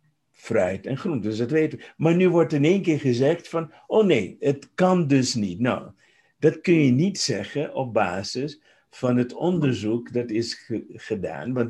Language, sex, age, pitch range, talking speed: English, male, 50-69, 115-150 Hz, 185 wpm